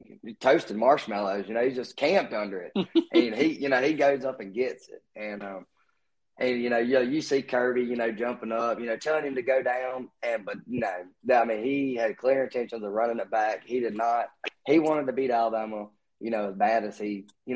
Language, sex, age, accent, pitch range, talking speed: English, male, 20-39, American, 105-135 Hz, 235 wpm